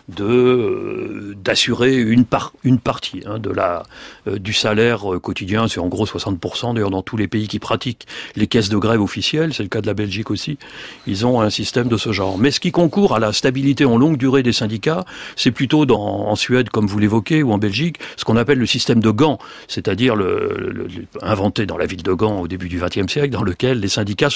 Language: French